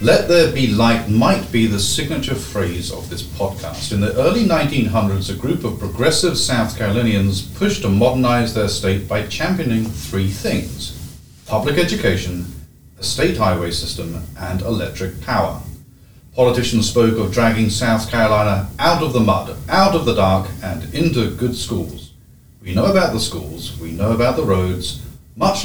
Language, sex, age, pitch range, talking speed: English, male, 40-59, 90-120 Hz, 160 wpm